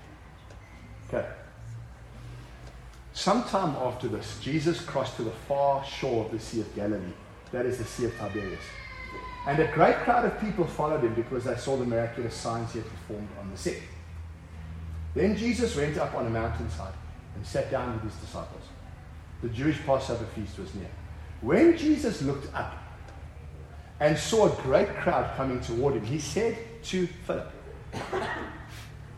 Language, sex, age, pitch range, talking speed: English, male, 40-59, 90-140 Hz, 160 wpm